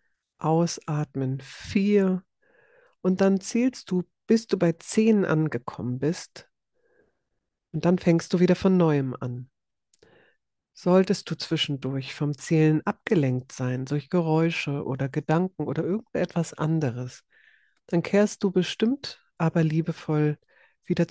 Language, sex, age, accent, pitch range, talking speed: German, female, 50-69, German, 145-180 Hz, 115 wpm